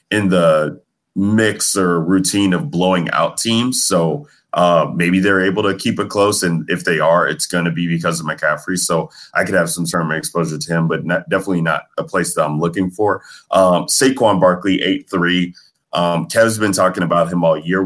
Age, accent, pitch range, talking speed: 30-49, American, 85-95 Hz, 205 wpm